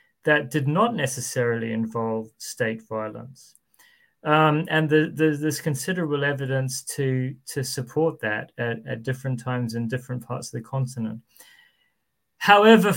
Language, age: English, 30-49